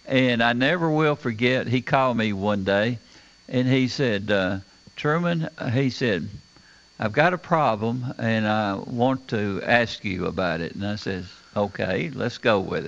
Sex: male